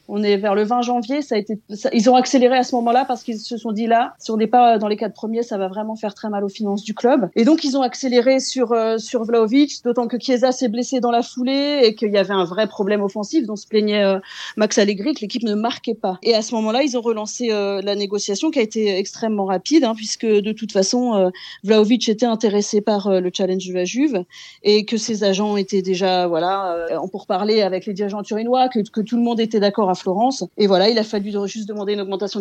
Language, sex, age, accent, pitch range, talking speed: French, female, 30-49, French, 205-245 Hz, 255 wpm